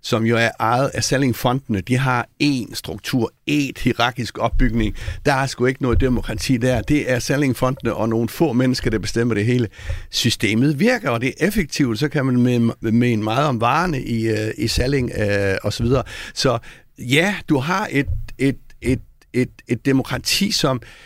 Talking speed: 175 wpm